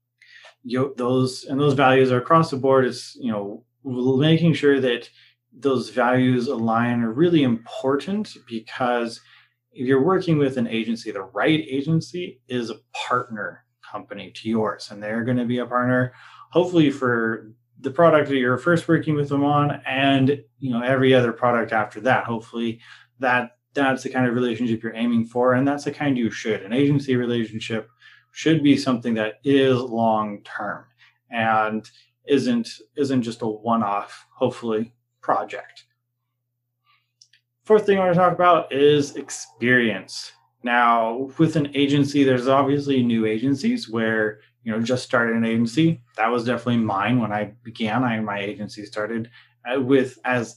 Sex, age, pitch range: male, 20-39, 115-140 Hz